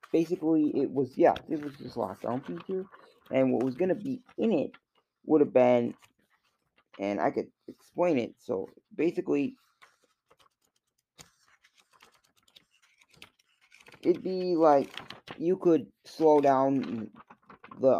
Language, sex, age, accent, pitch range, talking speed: English, male, 20-39, American, 125-160 Hz, 125 wpm